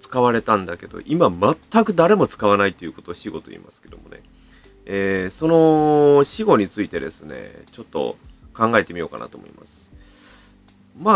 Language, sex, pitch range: Japanese, male, 95-160 Hz